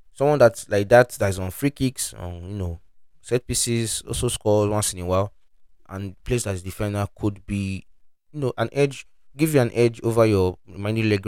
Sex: male